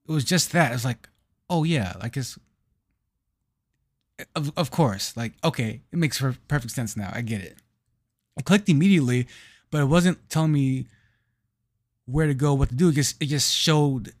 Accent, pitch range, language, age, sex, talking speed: American, 115-145 Hz, English, 20-39, male, 180 wpm